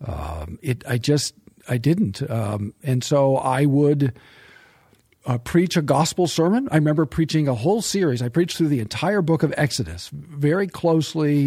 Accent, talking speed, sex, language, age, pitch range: American, 160 wpm, male, English, 50-69, 130-160 Hz